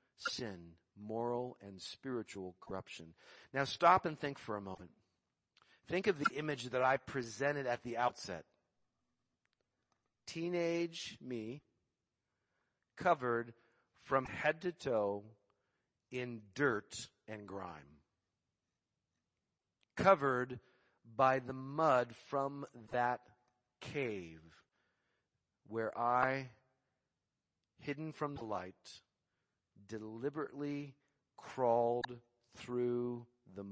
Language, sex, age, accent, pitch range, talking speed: English, male, 50-69, American, 105-130 Hz, 90 wpm